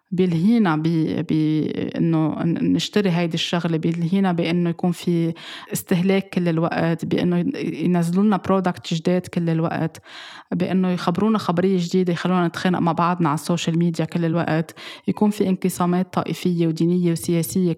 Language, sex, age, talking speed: Arabic, female, 20-39, 130 wpm